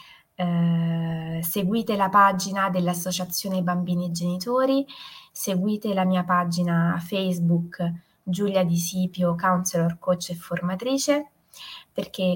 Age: 20-39